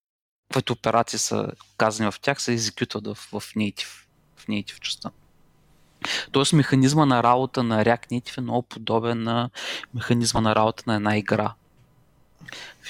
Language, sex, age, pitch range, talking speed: Bulgarian, male, 30-49, 110-130 Hz, 140 wpm